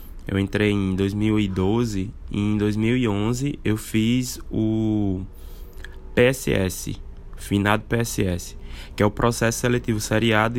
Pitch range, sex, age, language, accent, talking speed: 95-120 Hz, male, 20-39, Portuguese, Brazilian, 110 wpm